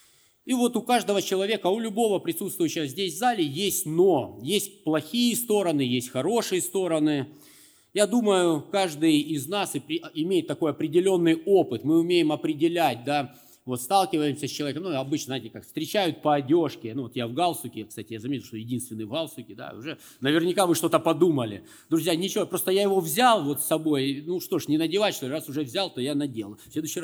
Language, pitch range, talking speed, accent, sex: Russian, 140-195 Hz, 185 wpm, native, male